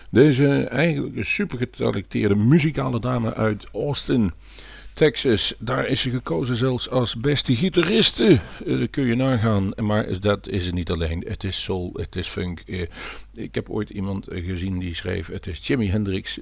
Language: Dutch